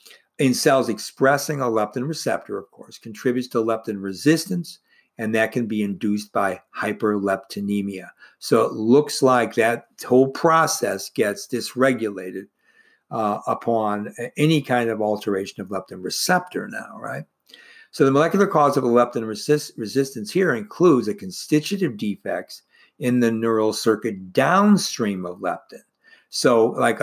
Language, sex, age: English, male, 50-69